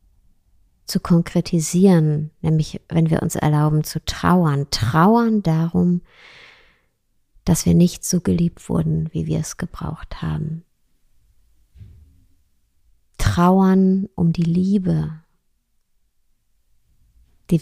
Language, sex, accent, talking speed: German, female, German, 90 wpm